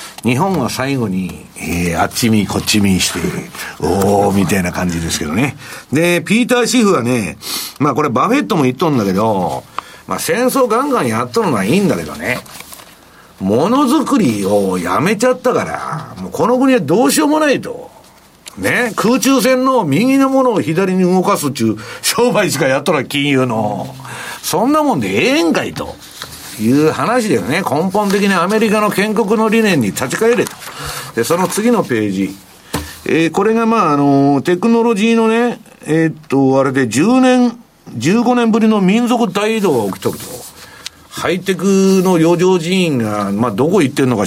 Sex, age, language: male, 60-79, Japanese